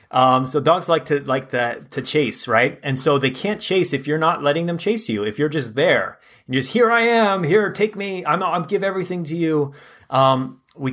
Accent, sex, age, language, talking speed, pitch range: American, male, 30-49, English, 235 wpm, 120-150 Hz